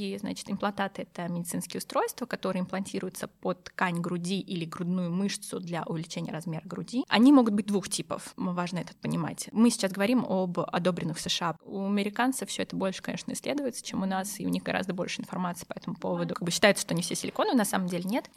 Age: 20-39